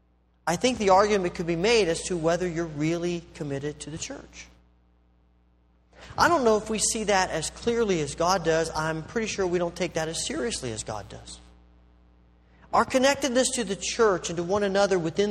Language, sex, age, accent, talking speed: English, male, 40-59, American, 195 wpm